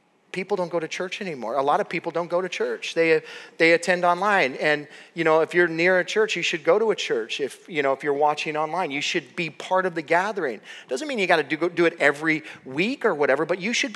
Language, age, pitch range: English, 30-49, 145-185 Hz